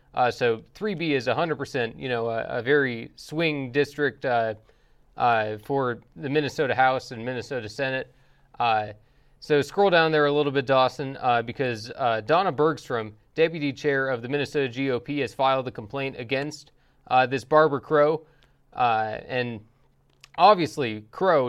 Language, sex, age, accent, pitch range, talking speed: English, male, 20-39, American, 125-155 Hz, 155 wpm